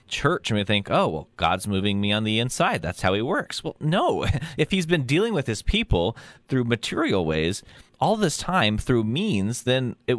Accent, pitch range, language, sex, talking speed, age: American, 105-145 Hz, English, male, 205 wpm, 30-49